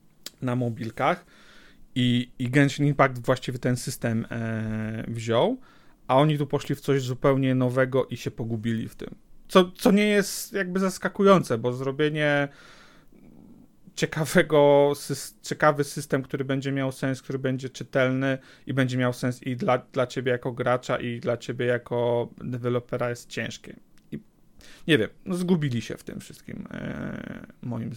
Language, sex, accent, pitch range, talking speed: Polish, male, native, 125-150 Hz, 140 wpm